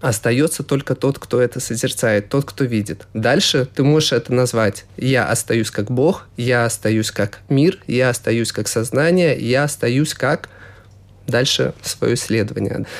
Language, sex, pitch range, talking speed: Russian, male, 120-145 Hz, 150 wpm